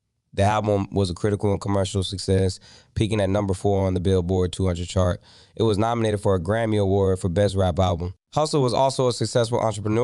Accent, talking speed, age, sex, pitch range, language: American, 205 wpm, 20-39, male, 95-110 Hz, English